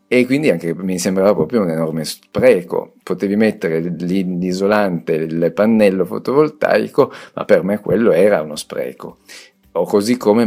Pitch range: 85-100 Hz